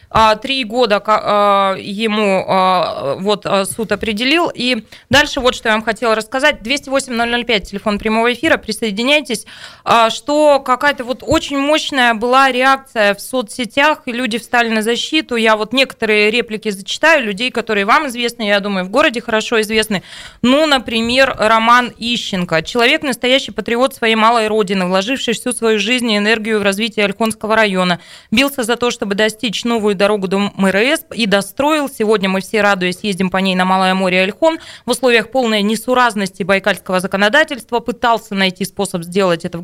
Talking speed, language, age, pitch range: 155 wpm, Russian, 20-39, 205-255 Hz